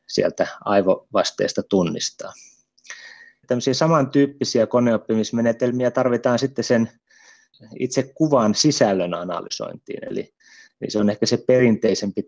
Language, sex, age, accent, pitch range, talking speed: Finnish, male, 30-49, native, 100-125 Hz, 100 wpm